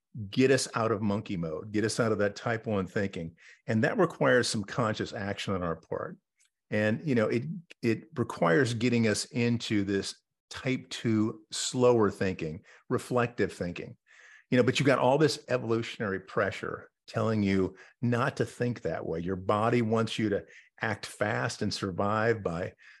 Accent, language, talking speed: American, English, 170 wpm